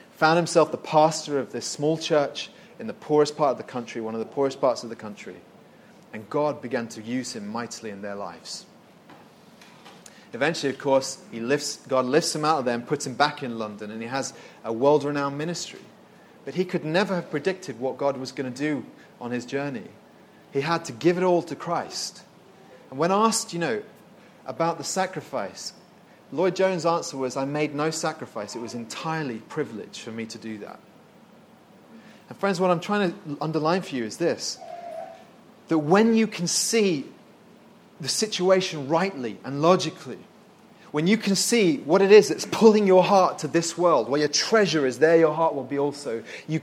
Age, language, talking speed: 30-49, English, 190 wpm